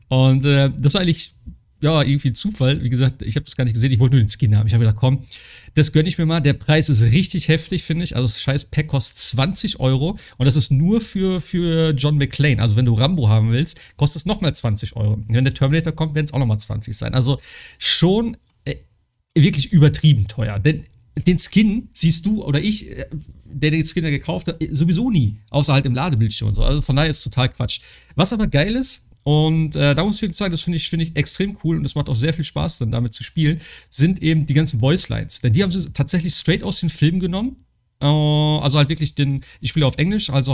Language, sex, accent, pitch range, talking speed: German, male, German, 130-165 Hz, 245 wpm